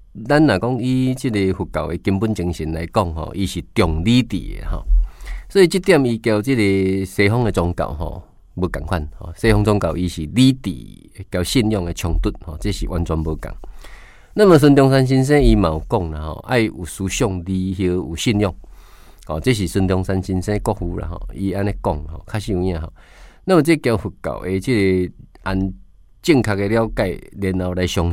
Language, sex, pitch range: Chinese, male, 85-115 Hz